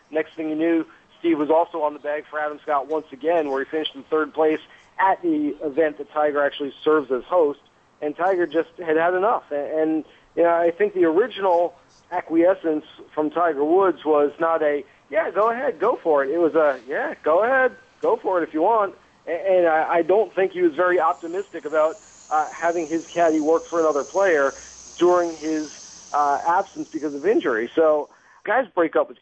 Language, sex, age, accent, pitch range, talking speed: English, male, 40-59, American, 150-190 Hz, 195 wpm